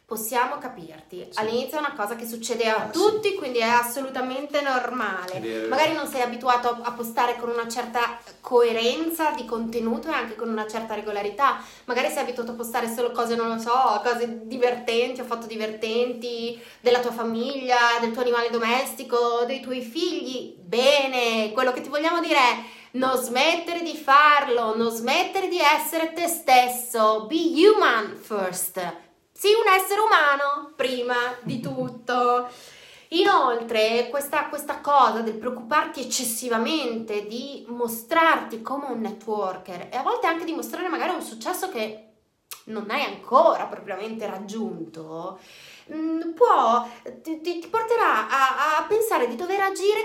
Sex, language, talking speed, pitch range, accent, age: female, Italian, 145 wpm, 230-310 Hz, native, 20-39